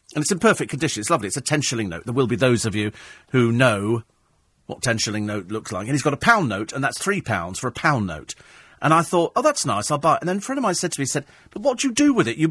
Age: 40-59